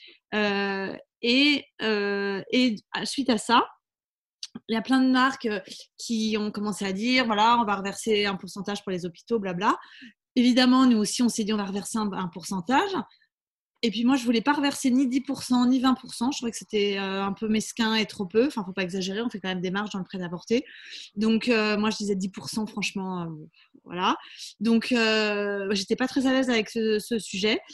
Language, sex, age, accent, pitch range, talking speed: French, female, 20-39, French, 205-260 Hz, 210 wpm